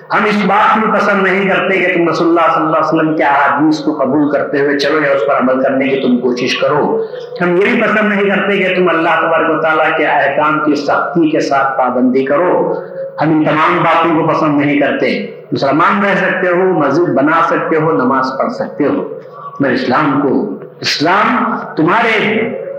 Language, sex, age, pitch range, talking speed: Urdu, male, 50-69, 155-200 Hz, 195 wpm